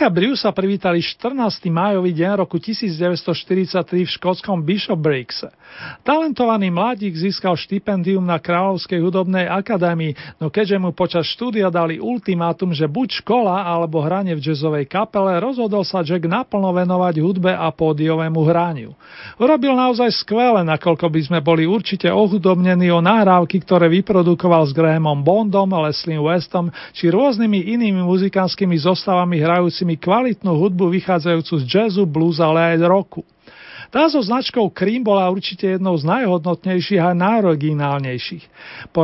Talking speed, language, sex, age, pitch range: 135 wpm, Slovak, male, 40-59, 170-205 Hz